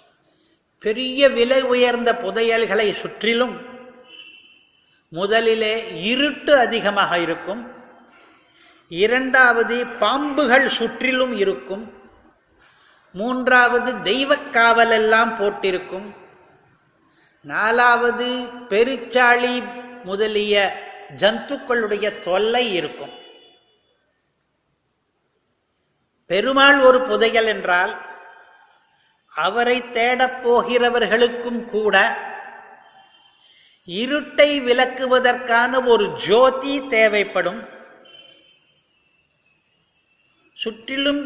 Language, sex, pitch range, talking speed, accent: Tamil, male, 215-255 Hz, 55 wpm, native